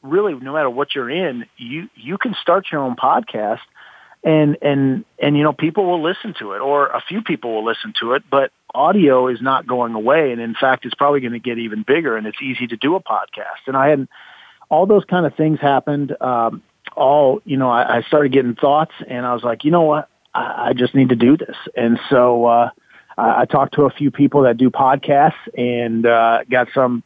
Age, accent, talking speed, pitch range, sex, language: 40-59, American, 230 wpm, 120-145 Hz, male, English